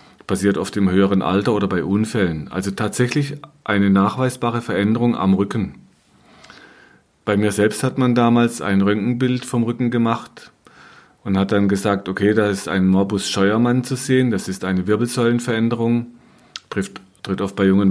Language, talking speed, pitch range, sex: German, 155 wpm, 100-120 Hz, male